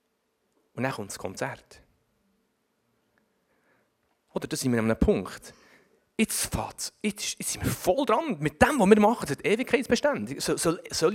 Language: German